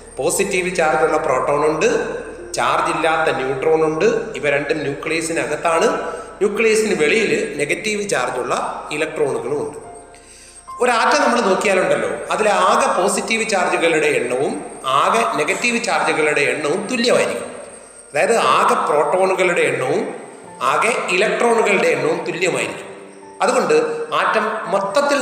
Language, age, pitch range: Malayalam, 30-49, 185-245 Hz